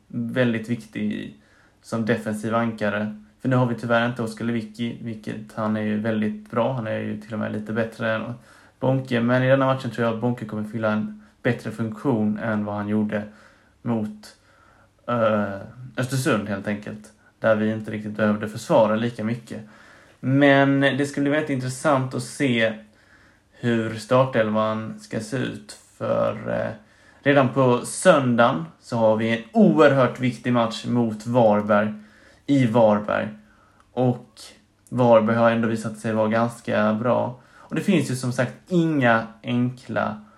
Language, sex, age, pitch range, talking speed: Swedish, male, 20-39, 105-120 Hz, 155 wpm